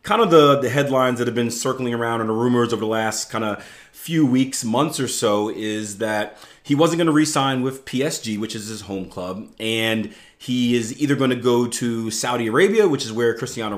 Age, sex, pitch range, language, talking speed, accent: 30-49, male, 110-155 Hz, English, 220 wpm, American